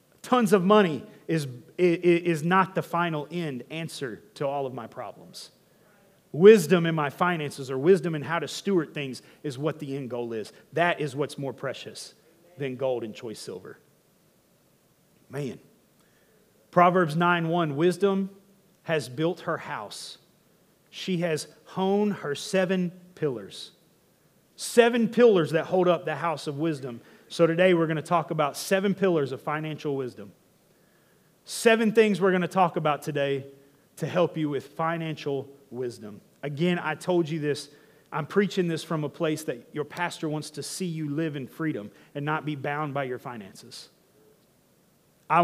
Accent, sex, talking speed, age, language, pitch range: American, male, 160 wpm, 30-49, English, 145-180 Hz